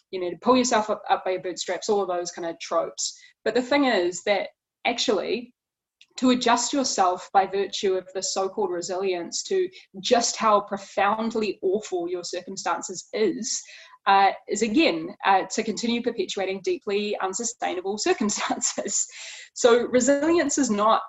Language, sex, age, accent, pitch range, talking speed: English, female, 20-39, Australian, 190-240 Hz, 155 wpm